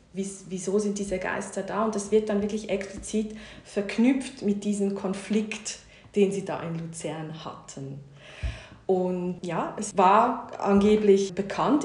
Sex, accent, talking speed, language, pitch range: female, German, 135 wpm, French, 180-215 Hz